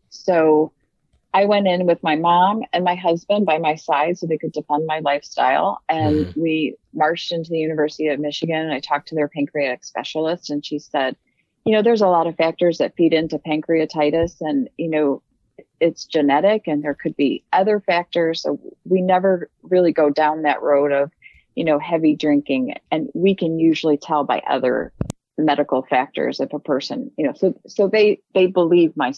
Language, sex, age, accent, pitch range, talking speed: English, female, 30-49, American, 155-185 Hz, 190 wpm